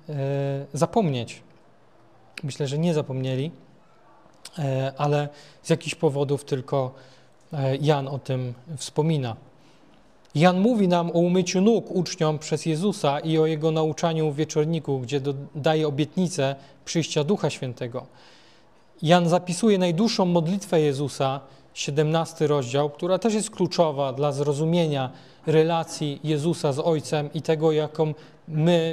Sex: male